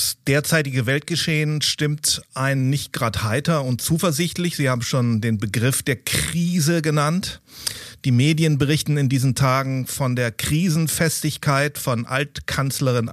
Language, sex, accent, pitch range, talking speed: German, male, German, 130-160 Hz, 130 wpm